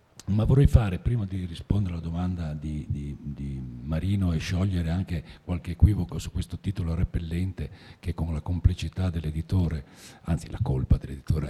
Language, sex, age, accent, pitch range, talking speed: Italian, male, 50-69, native, 85-105 Hz, 155 wpm